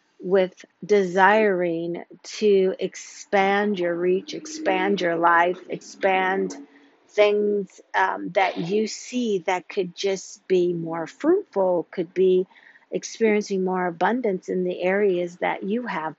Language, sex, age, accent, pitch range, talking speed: English, female, 50-69, American, 180-225 Hz, 120 wpm